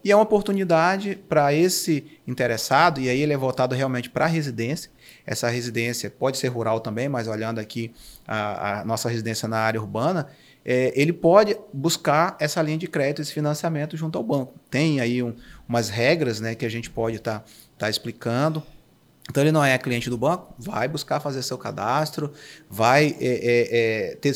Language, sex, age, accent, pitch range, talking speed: Portuguese, male, 30-49, Brazilian, 115-150 Hz, 170 wpm